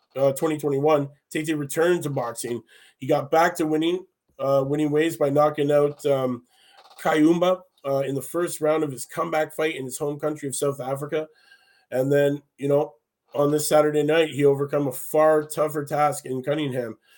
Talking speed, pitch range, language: 180 wpm, 140-160 Hz, English